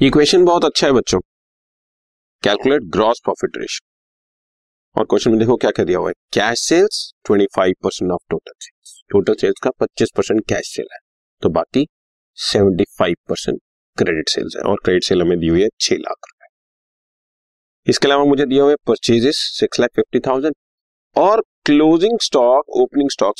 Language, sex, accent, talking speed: Hindi, male, native, 95 wpm